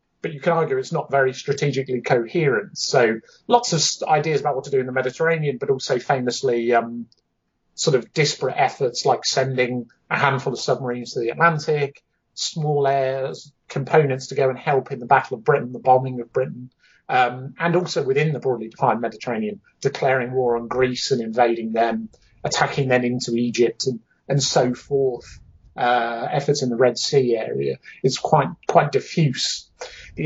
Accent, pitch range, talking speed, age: British, 125-155 Hz, 175 wpm, 30-49